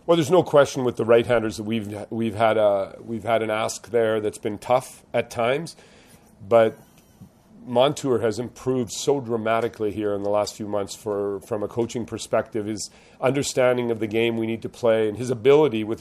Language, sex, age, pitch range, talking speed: English, male, 40-59, 110-125 Hz, 195 wpm